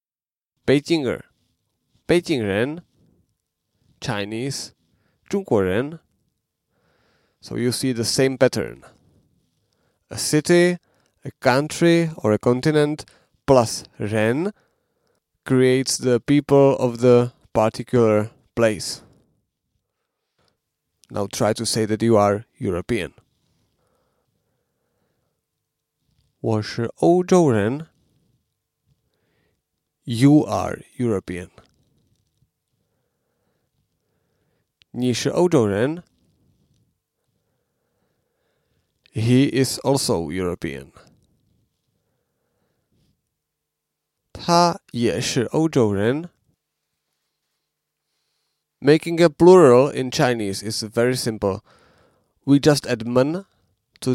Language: English